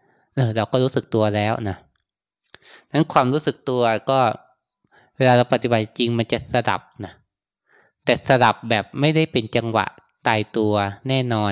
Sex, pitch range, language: male, 110-125 Hz, Thai